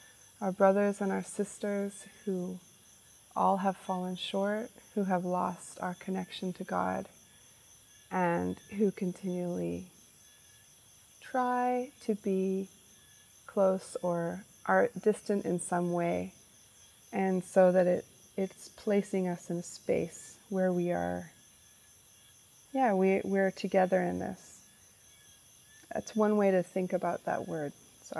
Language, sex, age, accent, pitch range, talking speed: English, female, 30-49, American, 175-200 Hz, 120 wpm